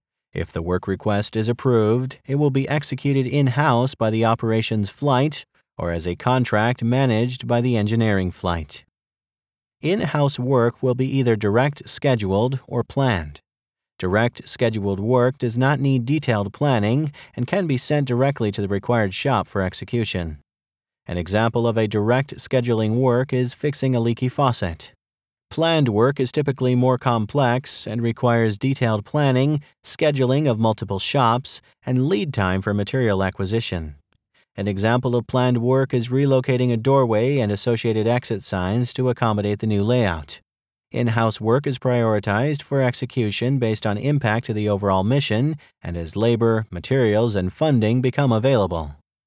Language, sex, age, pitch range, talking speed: English, male, 40-59, 110-135 Hz, 150 wpm